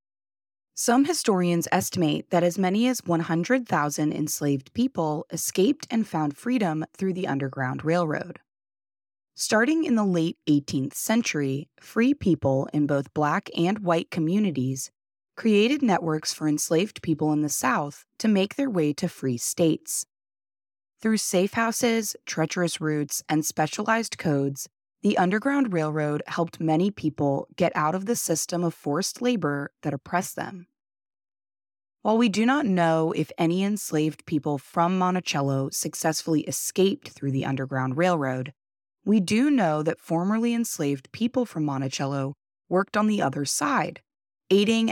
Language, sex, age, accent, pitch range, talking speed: English, female, 20-39, American, 145-205 Hz, 140 wpm